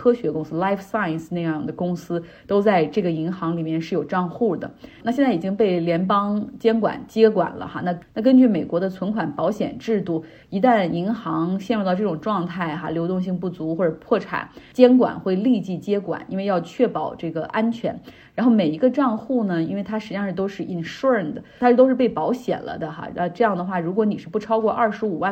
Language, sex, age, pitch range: Chinese, female, 30-49, 170-220 Hz